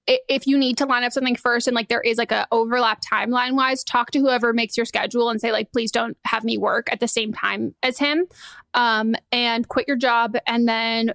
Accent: American